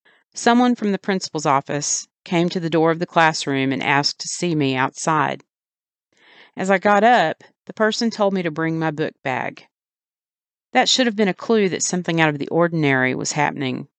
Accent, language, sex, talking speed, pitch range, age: American, English, female, 195 wpm, 155-205 Hz, 40-59